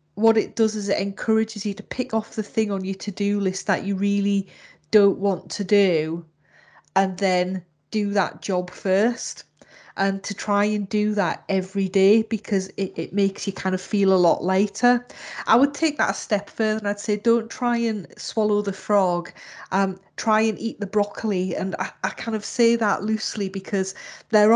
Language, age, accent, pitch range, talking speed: English, 30-49, British, 195-230 Hz, 195 wpm